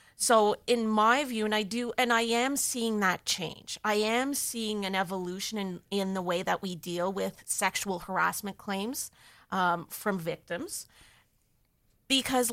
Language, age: English, 30-49